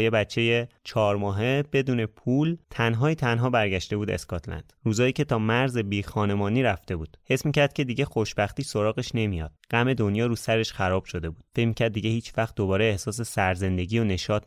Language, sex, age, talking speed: Persian, male, 20-39, 175 wpm